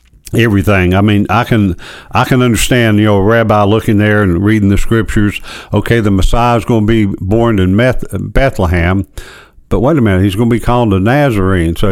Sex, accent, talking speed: male, American, 205 wpm